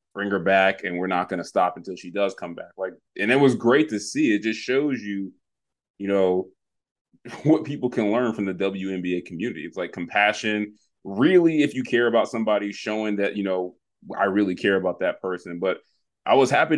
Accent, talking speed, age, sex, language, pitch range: American, 210 wpm, 20-39, male, English, 95-115 Hz